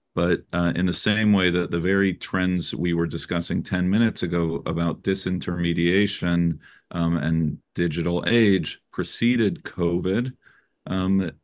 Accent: American